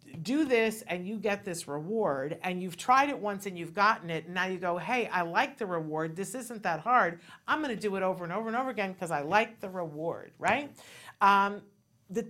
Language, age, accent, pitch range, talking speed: English, 50-69, American, 175-230 Hz, 235 wpm